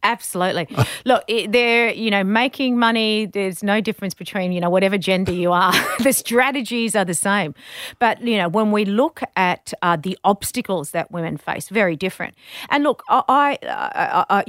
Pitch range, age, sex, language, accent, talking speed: 175-225 Hz, 40-59, female, English, Australian, 180 wpm